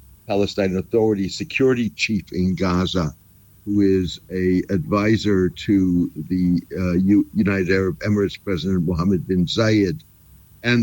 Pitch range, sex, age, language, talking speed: 90-110 Hz, male, 60-79, English, 120 wpm